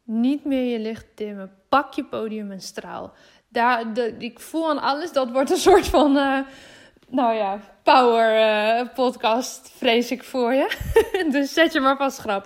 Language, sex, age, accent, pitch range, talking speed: Dutch, female, 20-39, Dutch, 215-260 Hz, 180 wpm